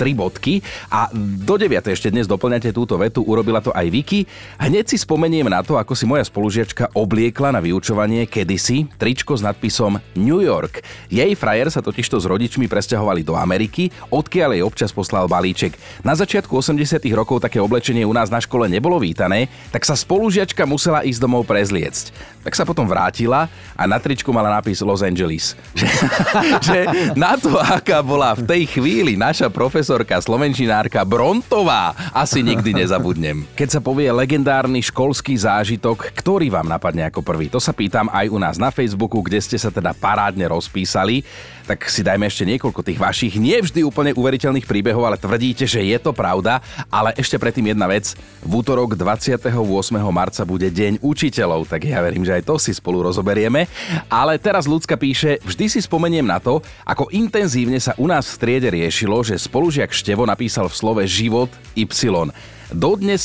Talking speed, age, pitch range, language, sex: 170 wpm, 30-49, 100-135 Hz, Slovak, male